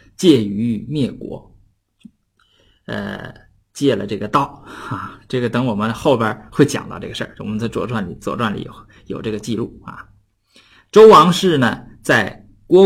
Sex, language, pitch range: male, Chinese, 105-150 Hz